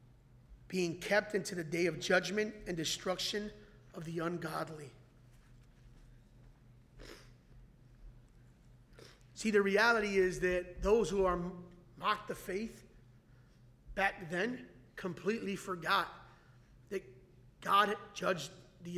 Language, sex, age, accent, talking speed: English, male, 30-49, American, 100 wpm